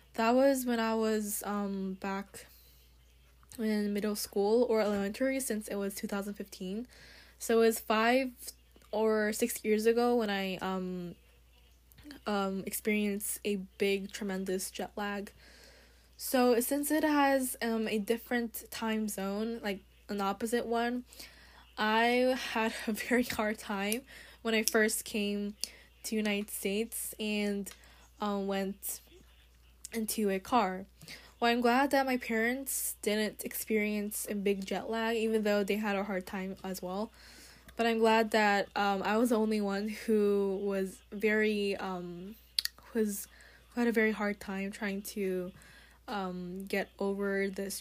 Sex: female